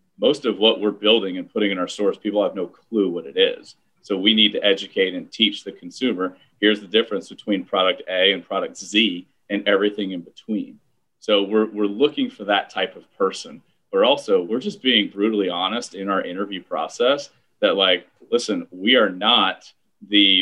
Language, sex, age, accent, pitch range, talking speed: English, male, 30-49, American, 95-115 Hz, 195 wpm